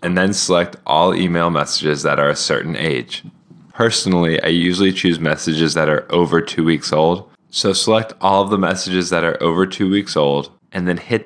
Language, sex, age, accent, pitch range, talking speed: English, male, 10-29, American, 80-95 Hz, 195 wpm